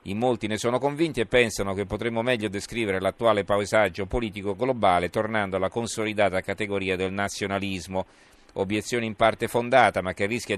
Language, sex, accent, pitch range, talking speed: Italian, male, native, 95-115 Hz, 160 wpm